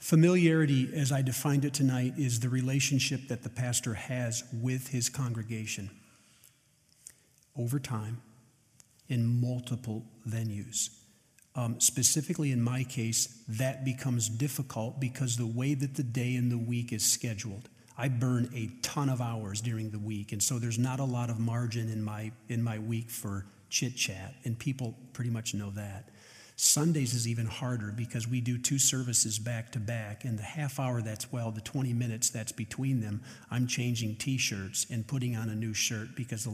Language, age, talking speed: English, 50-69, 170 wpm